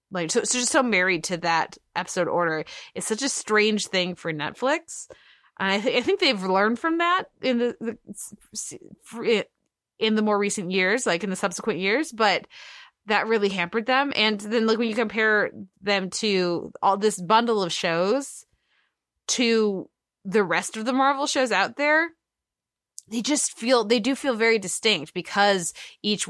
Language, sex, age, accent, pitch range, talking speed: English, female, 20-39, American, 180-235 Hz, 170 wpm